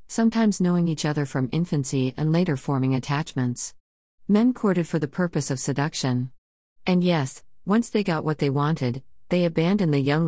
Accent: American